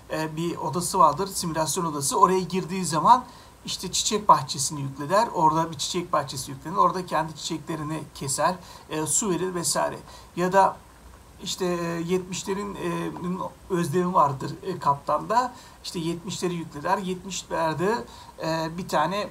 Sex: male